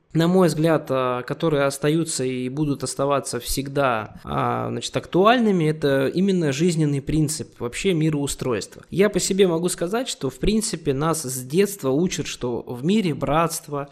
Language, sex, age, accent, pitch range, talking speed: Russian, male, 20-39, native, 140-185 Hz, 140 wpm